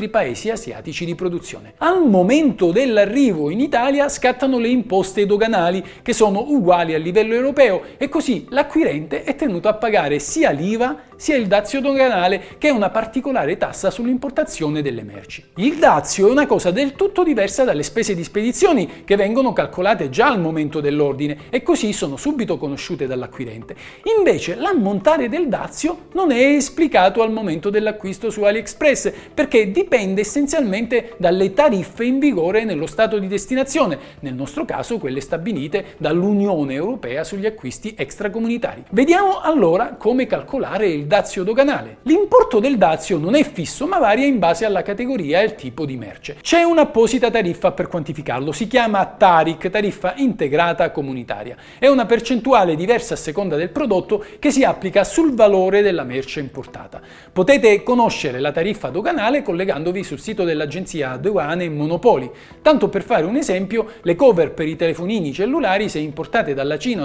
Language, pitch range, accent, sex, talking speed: Italian, 170-265 Hz, native, male, 155 wpm